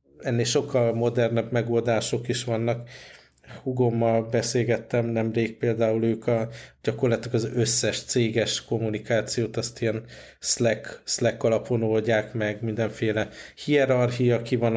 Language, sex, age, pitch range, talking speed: Hungarian, male, 50-69, 115-125 Hz, 115 wpm